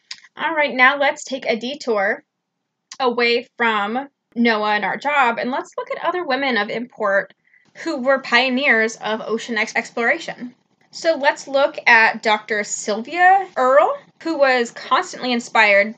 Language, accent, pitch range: English, American, 215-265 Hz